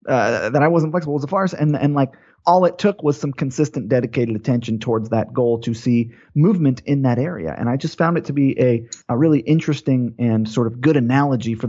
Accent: American